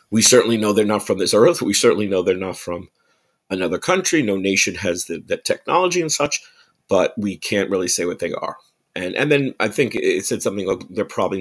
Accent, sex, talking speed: American, male, 220 wpm